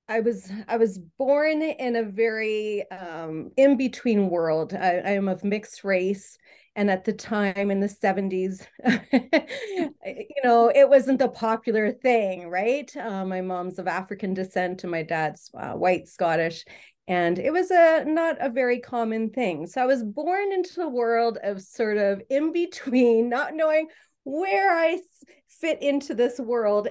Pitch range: 185-255 Hz